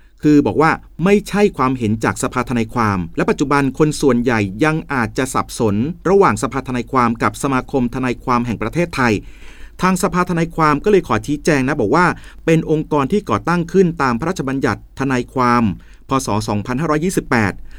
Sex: male